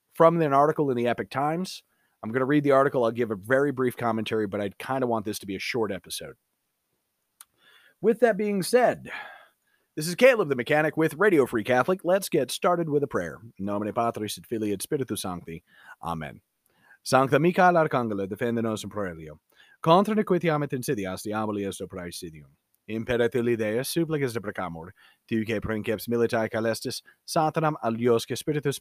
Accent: American